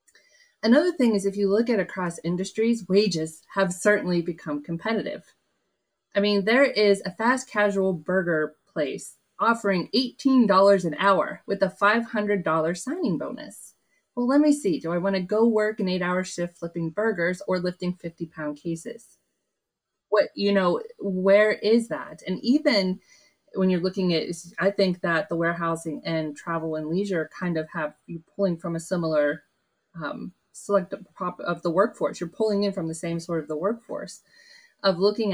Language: English